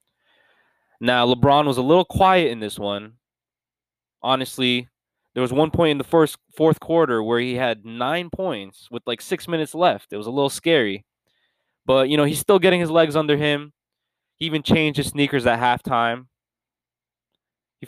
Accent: American